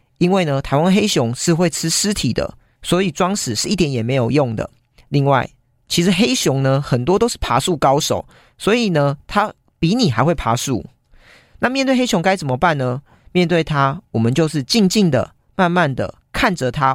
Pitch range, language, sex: 125-185 Hz, Chinese, male